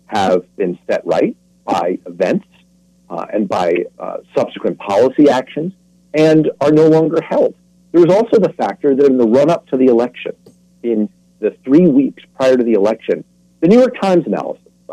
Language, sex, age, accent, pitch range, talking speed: English, male, 50-69, American, 125-180 Hz, 185 wpm